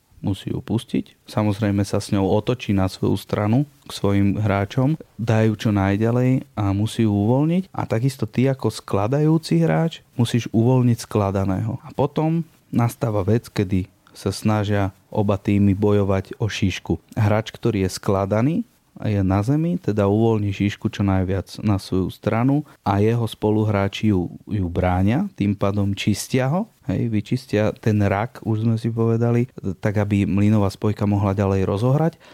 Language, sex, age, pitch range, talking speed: Slovak, male, 30-49, 100-130 Hz, 150 wpm